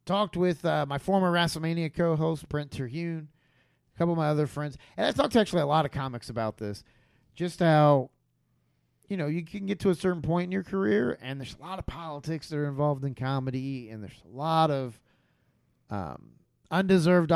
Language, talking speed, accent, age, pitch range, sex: English, 200 wpm, American, 30-49, 120-175 Hz, male